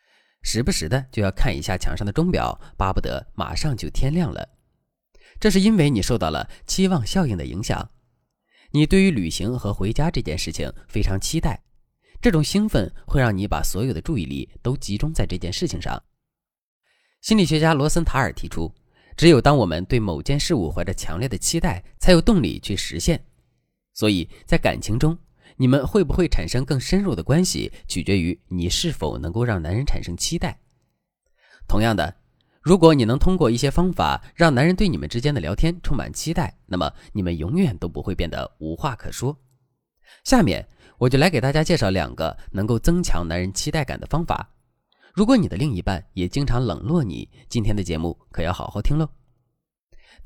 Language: Chinese